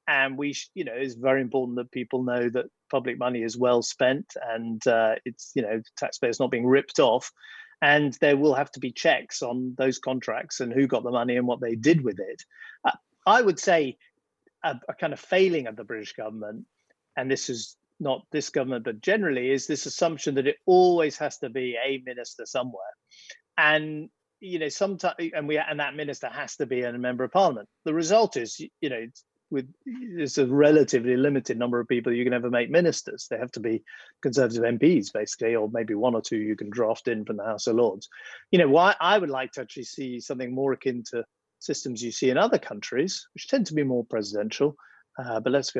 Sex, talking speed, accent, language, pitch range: male, 215 wpm, British, English, 120-150 Hz